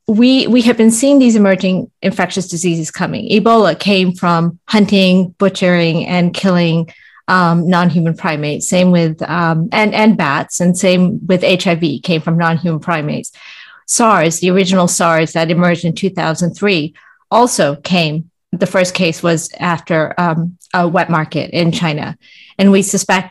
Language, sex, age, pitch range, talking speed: English, female, 40-59, 170-205 Hz, 150 wpm